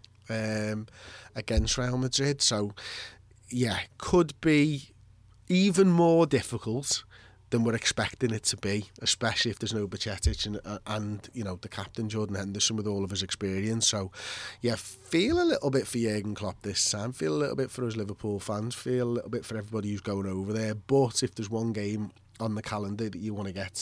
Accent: British